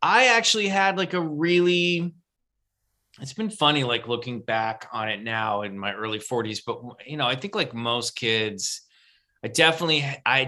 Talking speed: 170 wpm